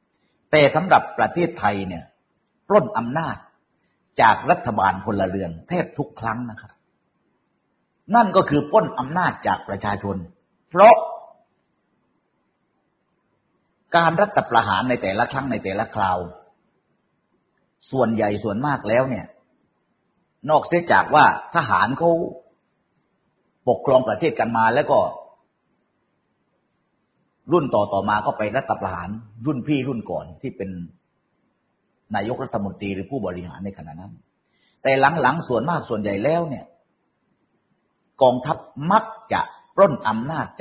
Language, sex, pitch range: Thai, male, 95-160 Hz